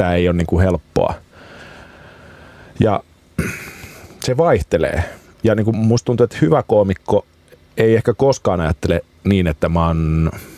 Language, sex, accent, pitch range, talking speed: Finnish, male, native, 80-100 Hz, 135 wpm